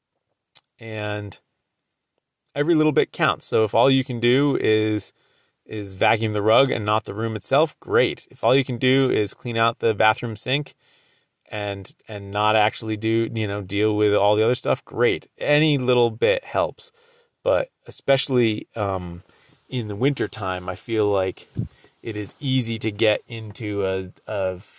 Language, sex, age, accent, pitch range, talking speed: English, male, 30-49, American, 105-125 Hz, 165 wpm